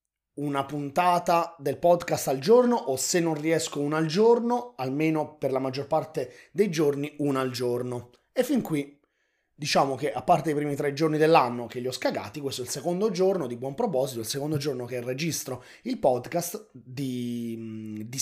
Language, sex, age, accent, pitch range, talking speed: Italian, male, 30-49, native, 130-185 Hz, 185 wpm